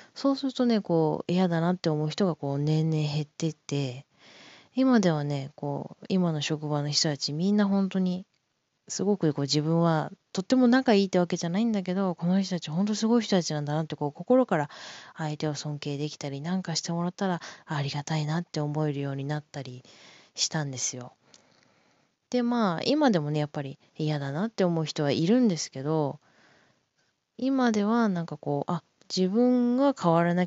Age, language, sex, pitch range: 20-39, Japanese, female, 145-195 Hz